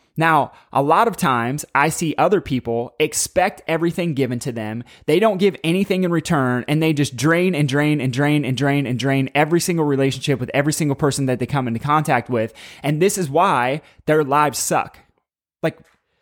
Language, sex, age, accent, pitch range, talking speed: English, male, 20-39, American, 140-180 Hz, 195 wpm